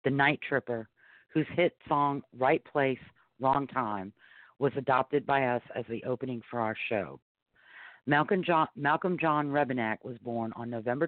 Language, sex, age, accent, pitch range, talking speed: English, female, 50-69, American, 115-140 Hz, 155 wpm